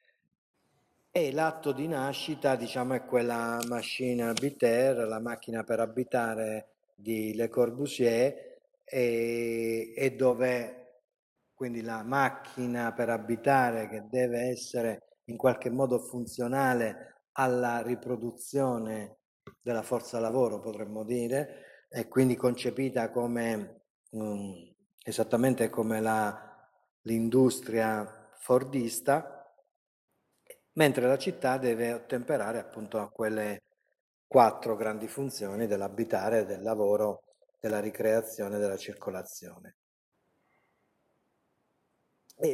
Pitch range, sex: 110-130 Hz, male